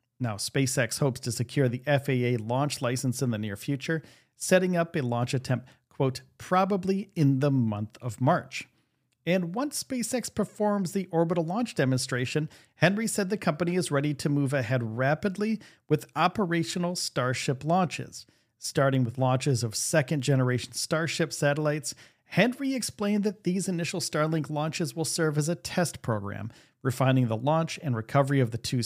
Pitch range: 125-165 Hz